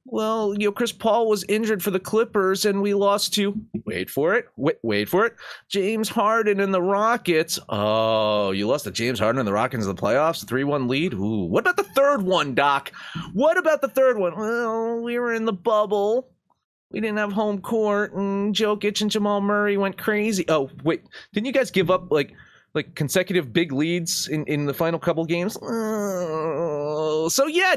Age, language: 30-49, English